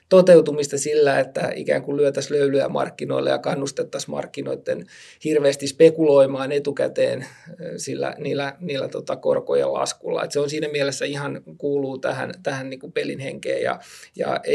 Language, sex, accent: Finnish, male, native